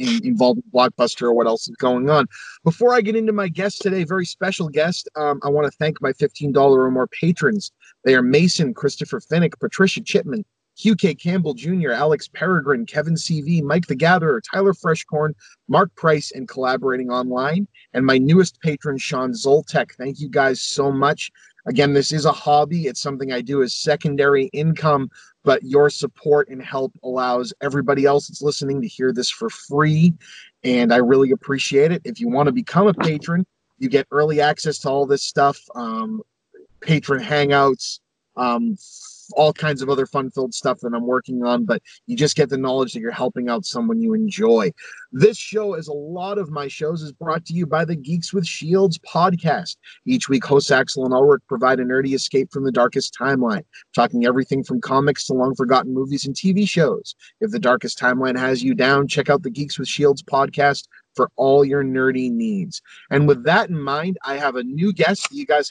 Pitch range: 135-185 Hz